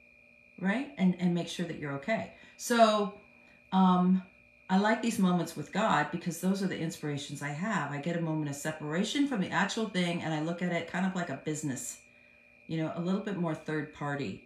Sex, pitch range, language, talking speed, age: female, 145-195 Hz, English, 210 wpm, 40-59